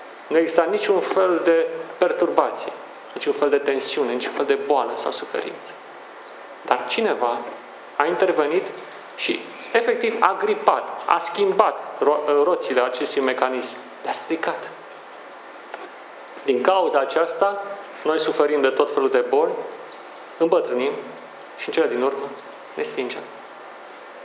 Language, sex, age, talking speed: Romanian, male, 40-59, 125 wpm